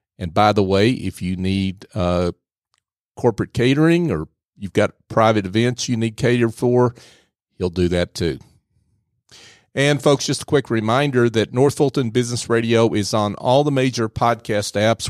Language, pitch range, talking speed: English, 100-125 Hz, 165 wpm